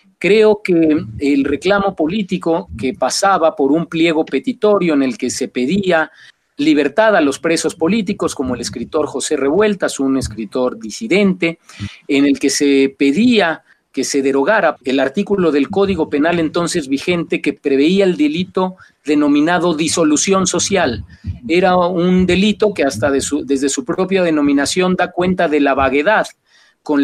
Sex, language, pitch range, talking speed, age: male, Spanish, 135-180 Hz, 145 wpm, 40-59